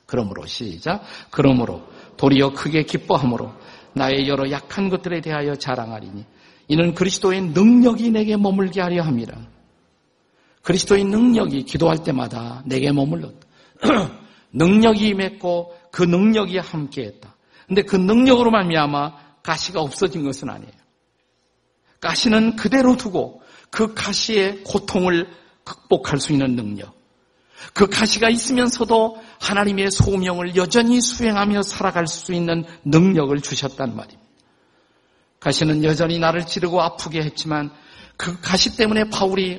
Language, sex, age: Korean, male, 50-69